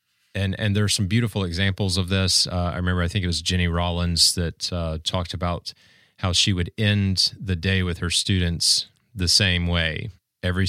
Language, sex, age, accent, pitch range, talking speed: English, male, 30-49, American, 85-100 Hz, 195 wpm